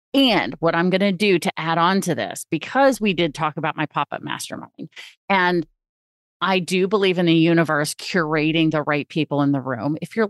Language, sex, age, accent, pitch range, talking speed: English, female, 30-49, American, 155-230 Hz, 205 wpm